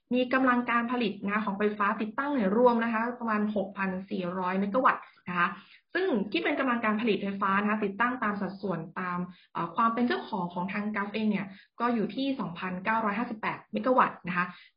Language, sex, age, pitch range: Thai, female, 20-39, 195-240 Hz